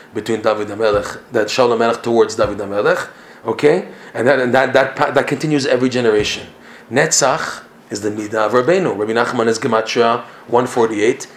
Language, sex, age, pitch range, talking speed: English, male, 30-49, 120-150 Hz, 175 wpm